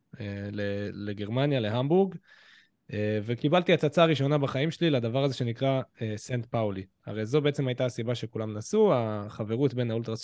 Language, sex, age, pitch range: Hebrew, male, 20-39, 110-135 Hz